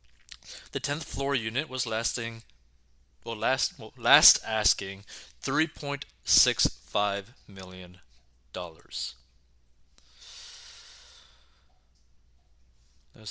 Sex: male